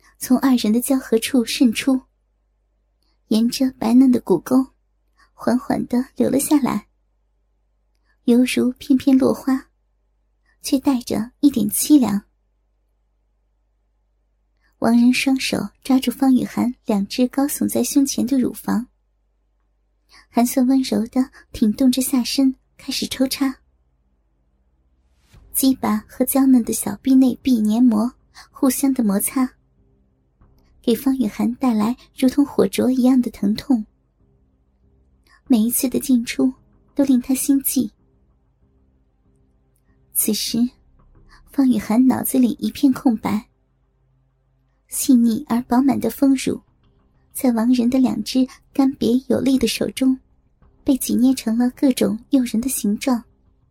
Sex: male